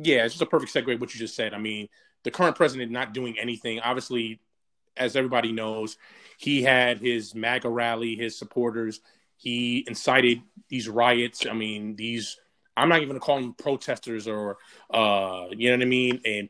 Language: English